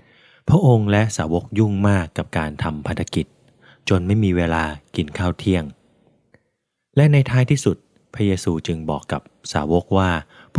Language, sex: Thai, male